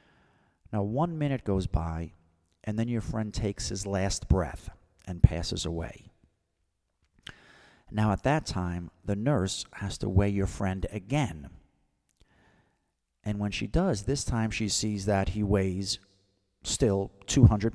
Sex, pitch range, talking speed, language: male, 90-125 Hz, 140 wpm, English